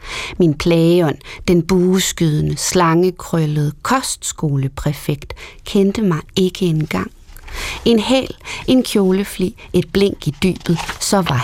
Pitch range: 165-200 Hz